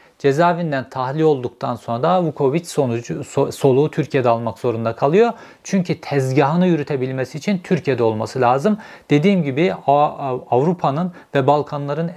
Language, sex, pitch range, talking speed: Turkish, male, 130-175 Hz, 120 wpm